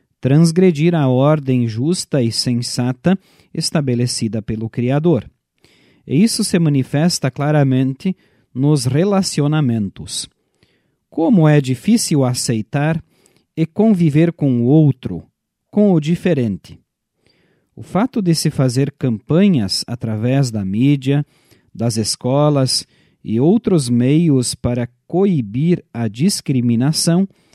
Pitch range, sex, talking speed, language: 125-165 Hz, male, 100 wpm, Portuguese